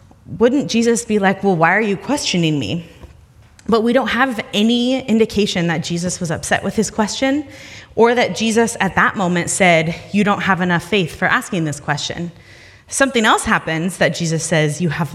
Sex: female